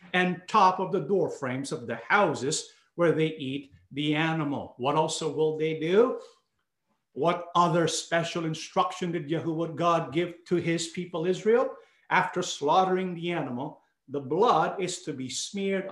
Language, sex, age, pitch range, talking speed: English, male, 50-69, 150-185 Hz, 155 wpm